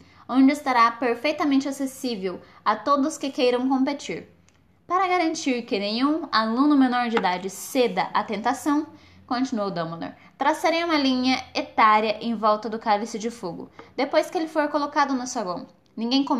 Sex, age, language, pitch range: female, 10-29, Portuguese, 220-280 Hz